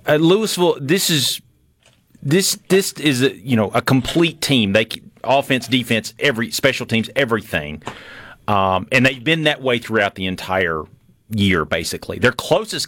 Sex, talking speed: male, 155 wpm